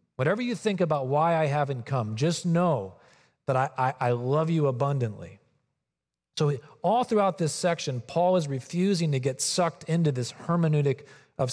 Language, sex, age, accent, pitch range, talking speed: English, male, 40-59, American, 125-165 Hz, 165 wpm